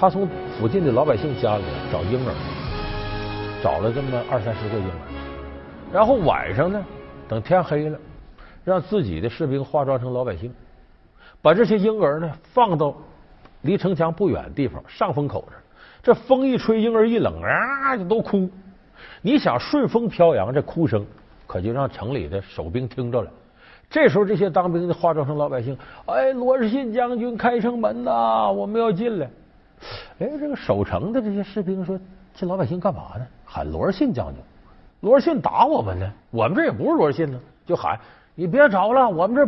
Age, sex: 50-69, male